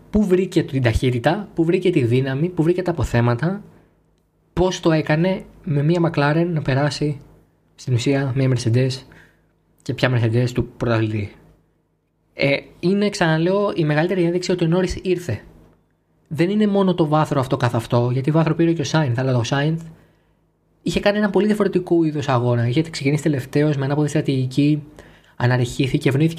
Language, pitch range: Greek, 125-175 Hz